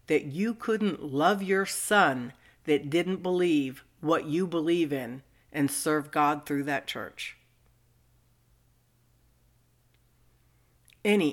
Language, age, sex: English, 60-79, female